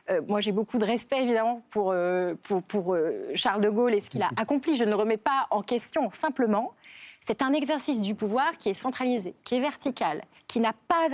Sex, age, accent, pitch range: female, 30-49, French, 200-275 Hz